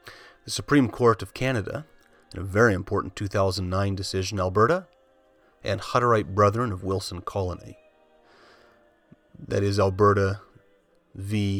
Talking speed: 115 wpm